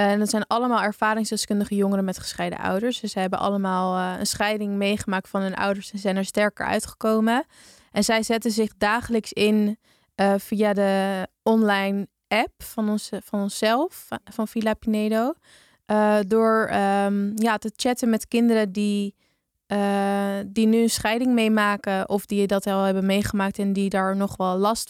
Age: 20-39